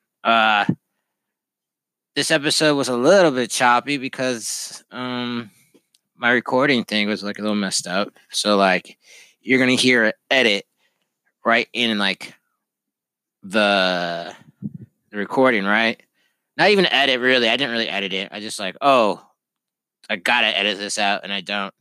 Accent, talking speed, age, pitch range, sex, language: American, 145 wpm, 20-39, 100-130 Hz, male, English